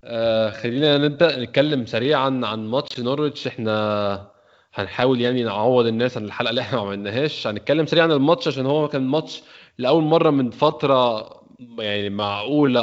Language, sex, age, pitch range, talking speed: Arabic, male, 20-39, 110-140 Hz, 160 wpm